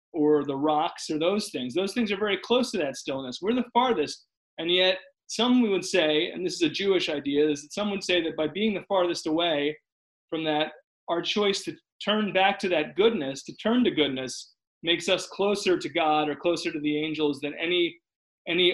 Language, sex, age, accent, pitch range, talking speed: English, male, 30-49, American, 150-200 Hz, 215 wpm